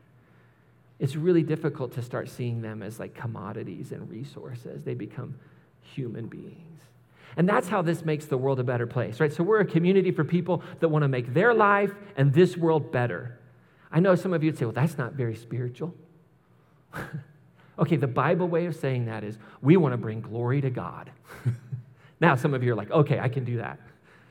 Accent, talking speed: American, 200 wpm